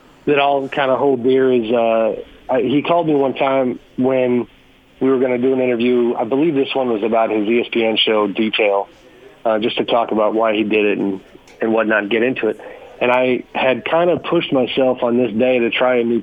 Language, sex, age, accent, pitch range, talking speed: English, male, 40-59, American, 115-135 Hz, 220 wpm